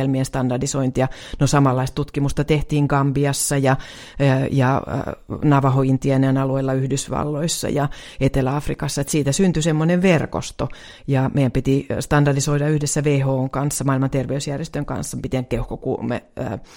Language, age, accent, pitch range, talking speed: Finnish, 30-49, native, 130-145 Hz, 105 wpm